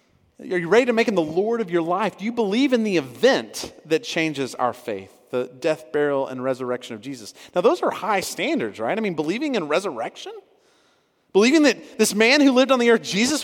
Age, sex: 30-49, male